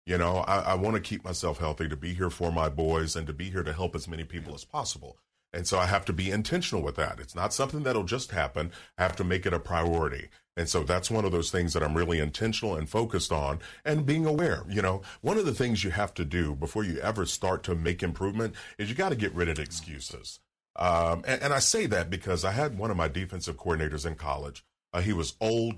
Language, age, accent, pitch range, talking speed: English, 40-59, American, 85-110 Hz, 255 wpm